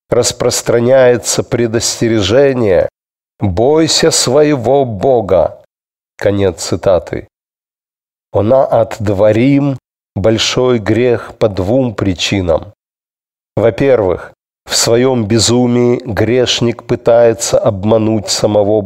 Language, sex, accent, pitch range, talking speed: Russian, male, native, 110-130 Hz, 70 wpm